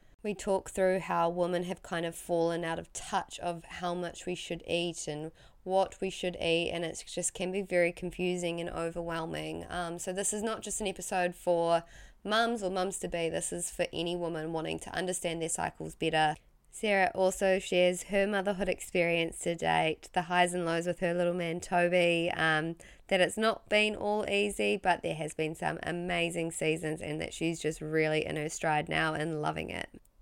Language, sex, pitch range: English, female, 165-185 Hz